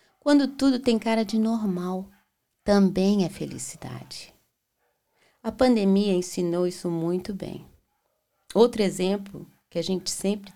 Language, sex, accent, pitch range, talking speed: Portuguese, female, Brazilian, 175-225 Hz, 120 wpm